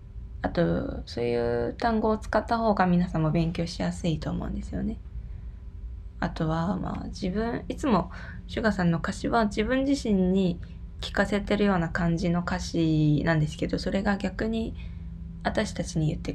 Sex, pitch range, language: female, 110-185 Hz, Japanese